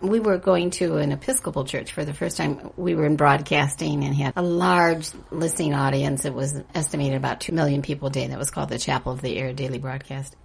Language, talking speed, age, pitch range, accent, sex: English, 230 wpm, 50-69, 140-175 Hz, American, female